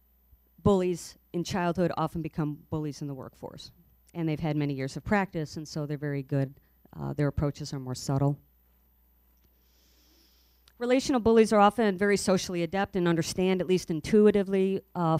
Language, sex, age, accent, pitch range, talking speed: English, female, 50-69, American, 140-180 Hz, 160 wpm